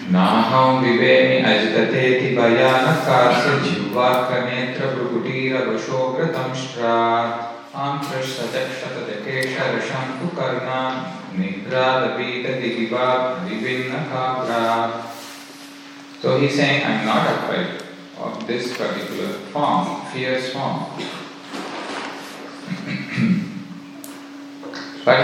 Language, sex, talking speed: English, male, 90 wpm